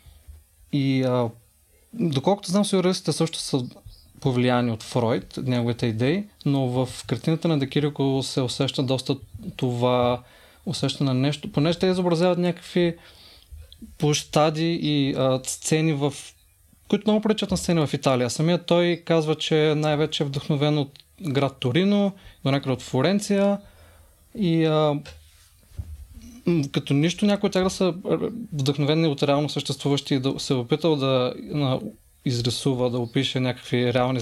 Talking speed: 135 wpm